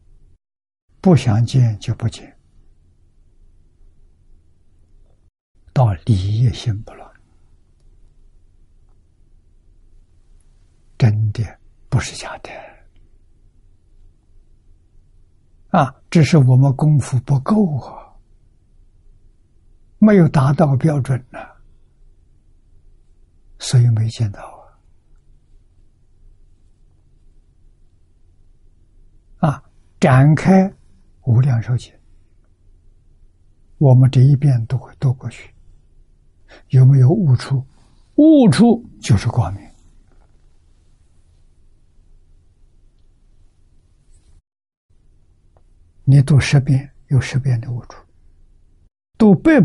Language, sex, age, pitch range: Chinese, male, 60-79, 85-125 Hz